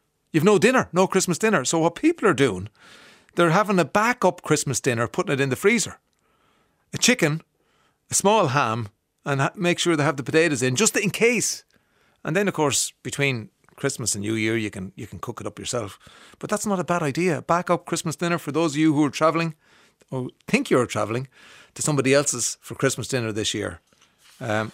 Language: English